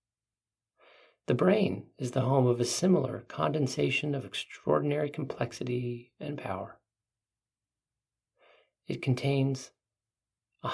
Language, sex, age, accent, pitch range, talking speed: English, male, 50-69, American, 110-145 Hz, 95 wpm